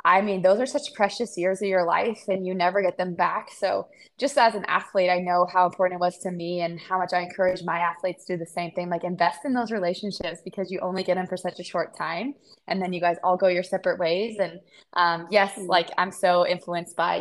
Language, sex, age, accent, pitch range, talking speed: English, female, 20-39, American, 170-190 Hz, 255 wpm